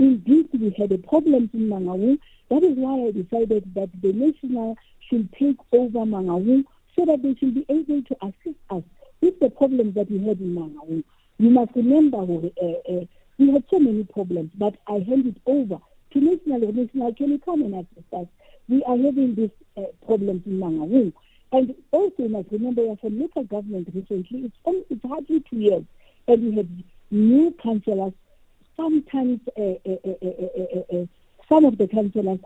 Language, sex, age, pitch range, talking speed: English, female, 50-69, 195-270 Hz, 180 wpm